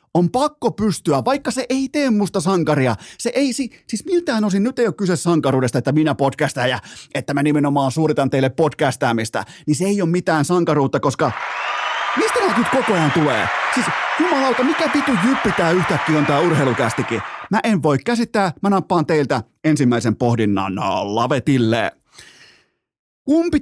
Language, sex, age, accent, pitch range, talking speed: Finnish, male, 30-49, native, 130-195 Hz, 160 wpm